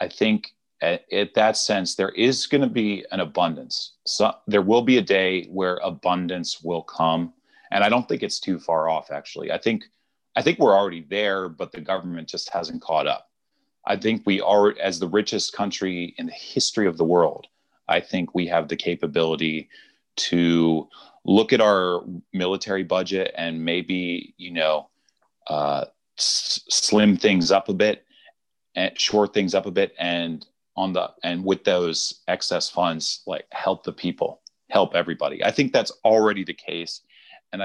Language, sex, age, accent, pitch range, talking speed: English, male, 30-49, American, 85-105 Hz, 175 wpm